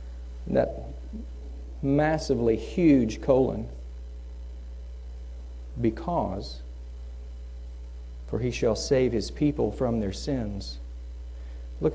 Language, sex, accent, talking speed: English, male, American, 75 wpm